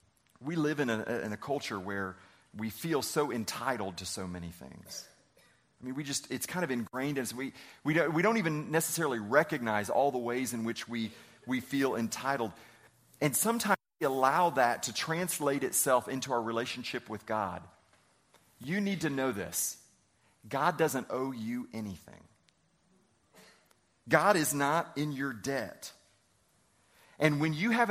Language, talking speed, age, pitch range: English, 155 wpm, 40-59, 135-215 Hz